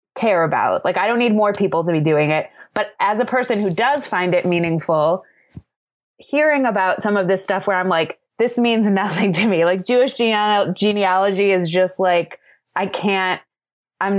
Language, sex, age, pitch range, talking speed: English, female, 20-39, 180-250 Hz, 185 wpm